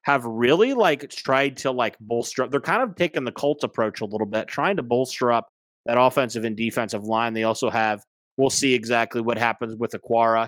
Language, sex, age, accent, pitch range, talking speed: English, male, 30-49, American, 115-135 Hz, 210 wpm